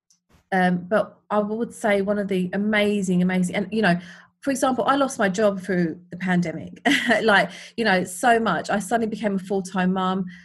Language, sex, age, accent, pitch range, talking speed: English, female, 30-49, British, 175-200 Hz, 190 wpm